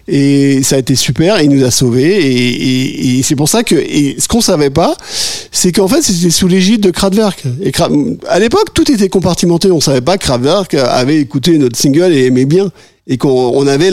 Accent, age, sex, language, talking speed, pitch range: French, 50-69, male, French, 225 wpm, 130-180 Hz